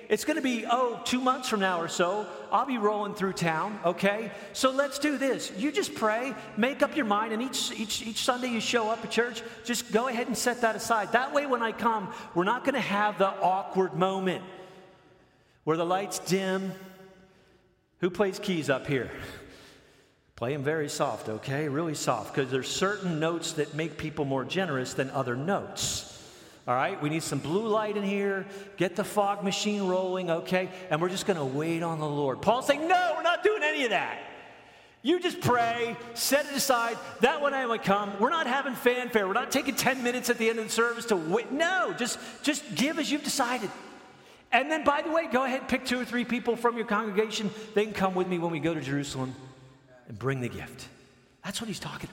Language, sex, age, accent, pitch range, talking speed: English, male, 40-59, American, 170-240 Hz, 215 wpm